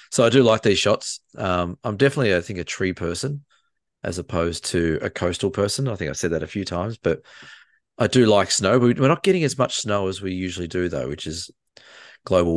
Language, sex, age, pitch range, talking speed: English, male, 30-49, 85-105 Hz, 225 wpm